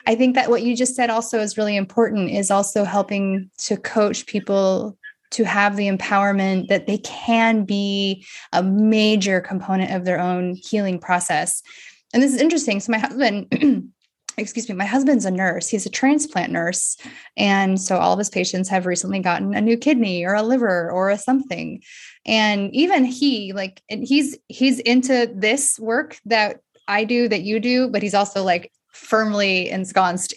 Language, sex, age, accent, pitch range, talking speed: English, female, 20-39, American, 190-235 Hz, 180 wpm